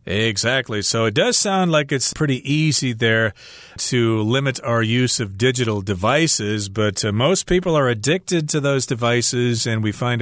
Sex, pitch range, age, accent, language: male, 115-145 Hz, 40-59, American, Chinese